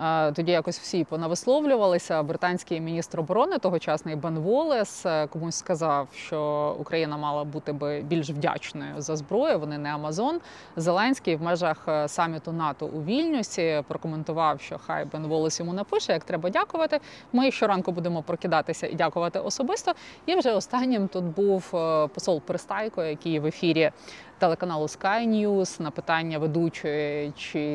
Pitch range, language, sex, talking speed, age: 155-200 Hz, Ukrainian, female, 140 wpm, 20-39